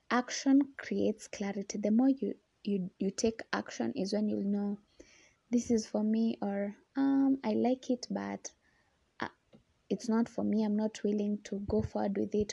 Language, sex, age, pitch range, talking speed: English, female, 20-39, 205-245 Hz, 180 wpm